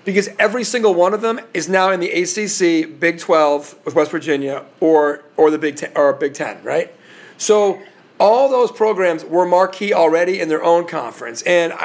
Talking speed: 185 wpm